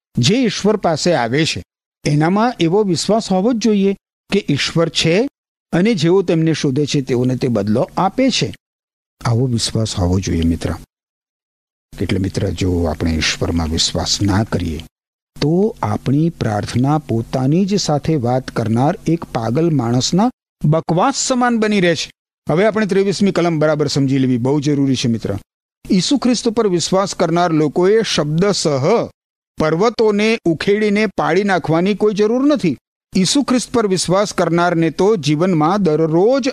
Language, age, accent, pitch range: Gujarati, 50-69, native, 140-200 Hz